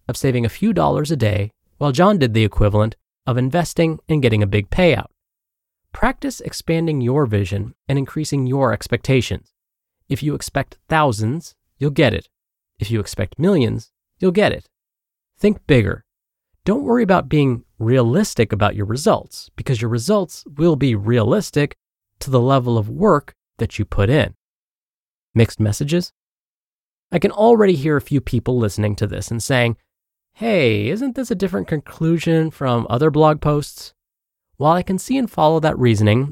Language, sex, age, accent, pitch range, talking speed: English, male, 30-49, American, 115-160 Hz, 165 wpm